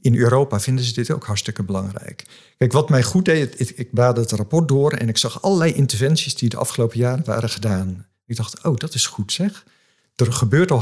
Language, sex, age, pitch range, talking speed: Dutch, male, 50-69, 110-145 Hz, 220 wpm